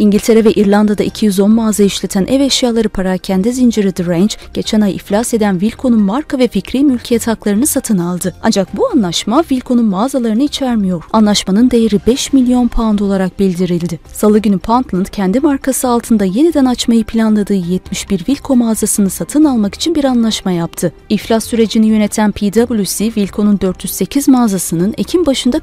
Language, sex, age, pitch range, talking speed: Turkish, female, 30-49, 190-235 Hz, 150 wpm